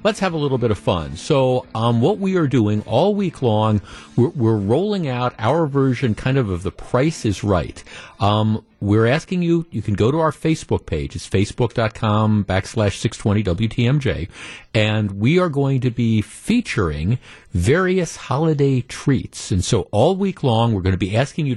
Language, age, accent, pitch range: English, 50-69, American, 110-150 Hz